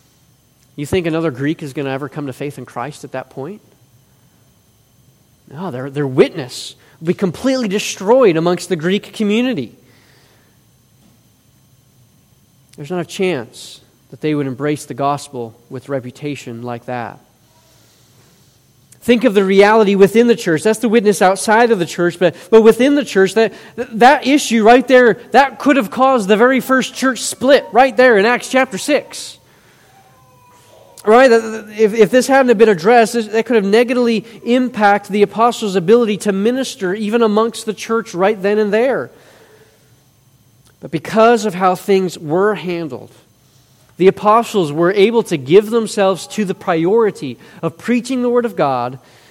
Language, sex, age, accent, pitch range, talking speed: English, male, 30-49, American, 135-220 Hz, 160 wpm